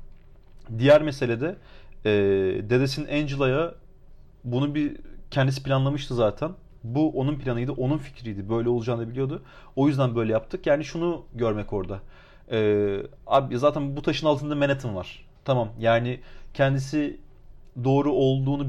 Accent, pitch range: native, 120-150 Hz